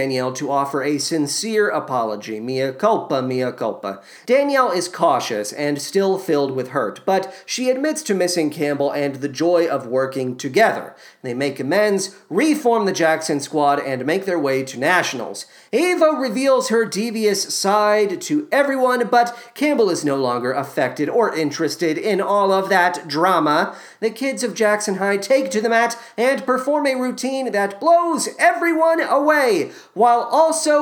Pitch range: 155-260 Hz